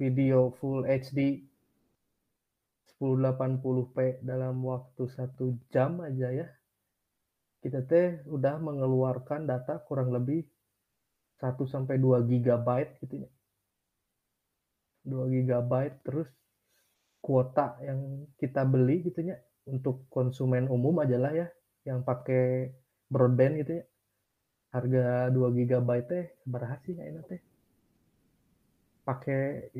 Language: Indonesian